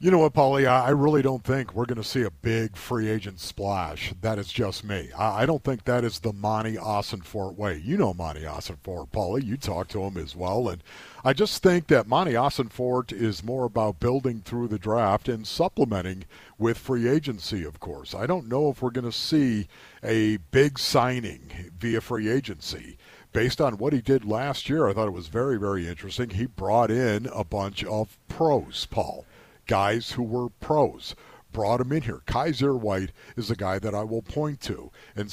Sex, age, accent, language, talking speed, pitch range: male, 50-69, American, English, 200 wpm, 100-130 Hz